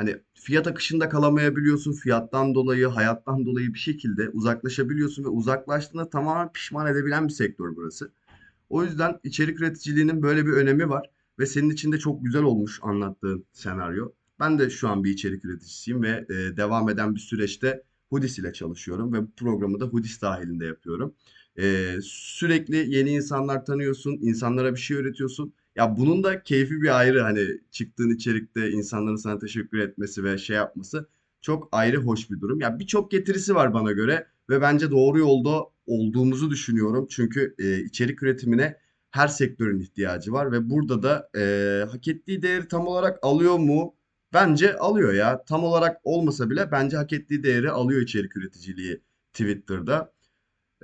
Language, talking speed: Turkish, 155 wpm